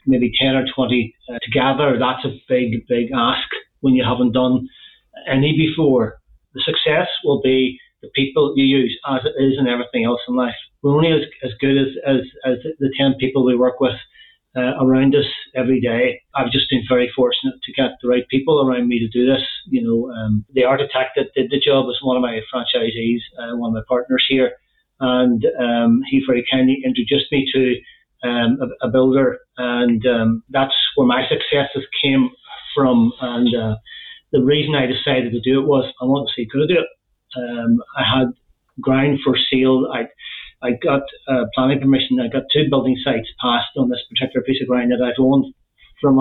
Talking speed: 200 wpm